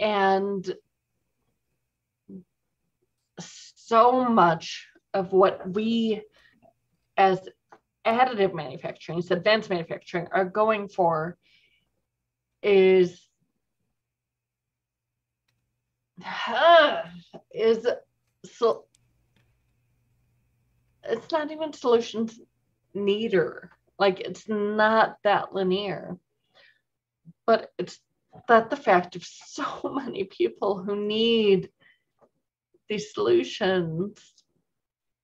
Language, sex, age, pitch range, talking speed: English, female, 30-49, 175-225 Hz, 70 wpm